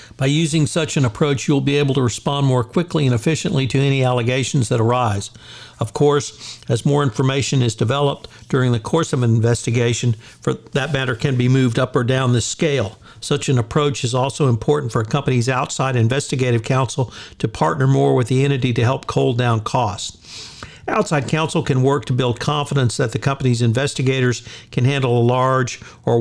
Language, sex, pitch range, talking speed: English, male, 115-140 Hz, 190 wpm